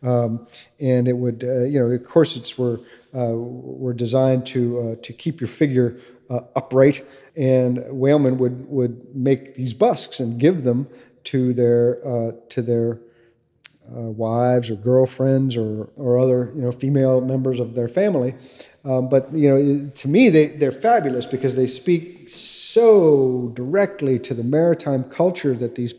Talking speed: 160 wpm